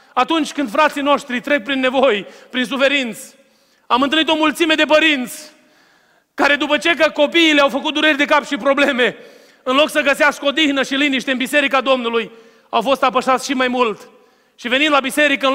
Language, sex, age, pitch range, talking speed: Romanian, male, 30-49, 195-270 Hz, 185 wpm